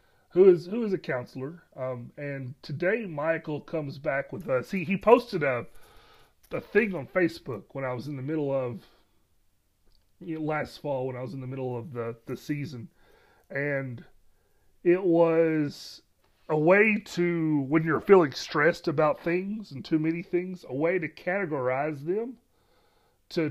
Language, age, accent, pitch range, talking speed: English, 30-49, American, 130-175 Hz, 165 wpm